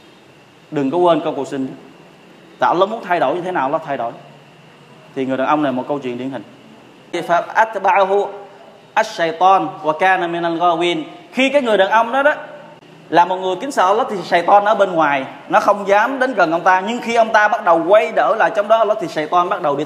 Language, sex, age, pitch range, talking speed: Vietnamese, male, 20-39, 165-220 Hz, 210 wpm